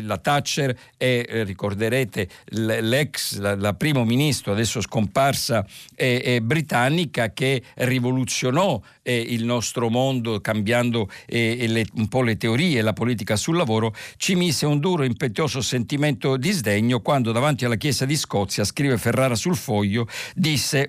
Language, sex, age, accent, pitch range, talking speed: Italian, male, 50-69, native, 110-135 Hz, 150 wpm